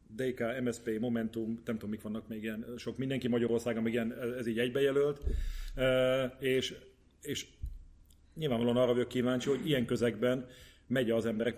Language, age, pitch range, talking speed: Hungarian, 30-49, 115-130 Hz, 150 wpm